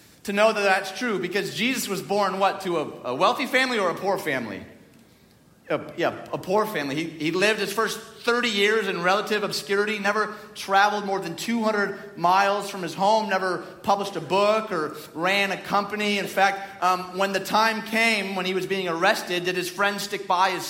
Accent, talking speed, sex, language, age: American, 195 wpm, male, English, 30-49